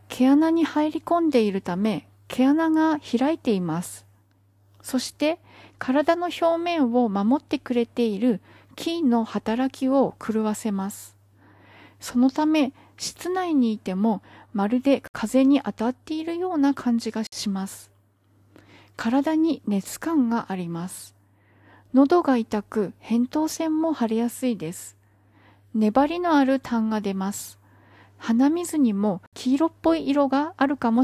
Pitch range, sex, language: 170-285 Hz, female, Japanese